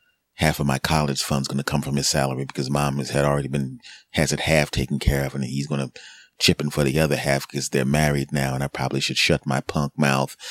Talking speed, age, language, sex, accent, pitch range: 255 wpm, 30-49, English, male, American, 75-100 Hz